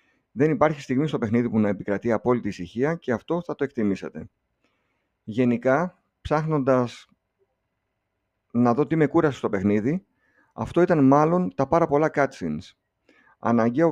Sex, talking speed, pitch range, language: male, 140 wpm, 110-145 Hz, Greek